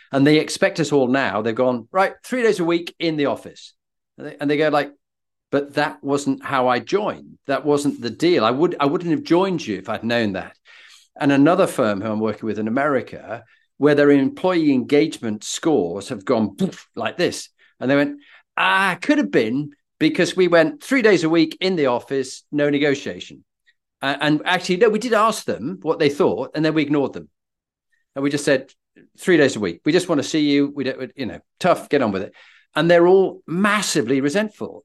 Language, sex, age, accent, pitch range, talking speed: English, male, 40-59, British, 140-190 Hz, 220 wpm